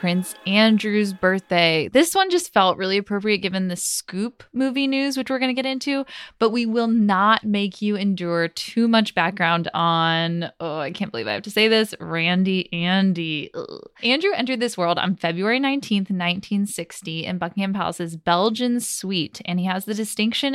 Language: English